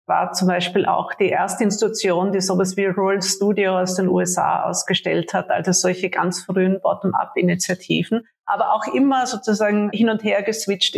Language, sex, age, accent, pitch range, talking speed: German, female, 50-69, Austrian, 190-215 Hz, 165 wpm